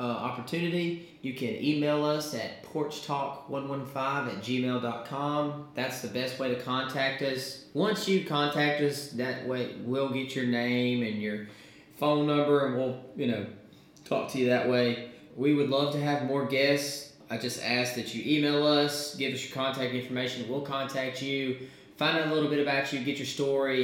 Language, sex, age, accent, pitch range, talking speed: English, male, 20-39, American, 125-140 Hz, 190 wpm